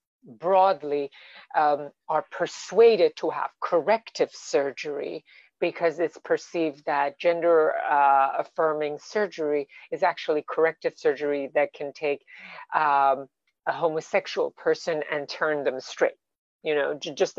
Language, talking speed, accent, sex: English, 115 wpm, American, female